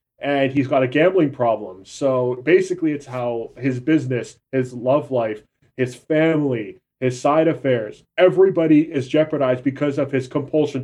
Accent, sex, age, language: American, male, 20-39, English